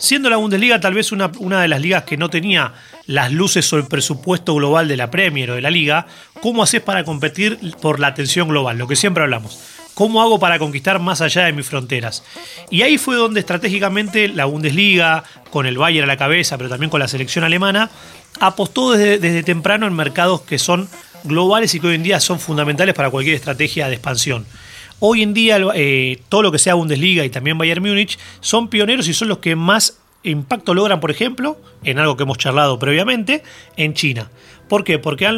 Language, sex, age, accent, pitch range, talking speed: Spanish, male, 30-49, Argentinian, 145-200 Hz, 210 wpm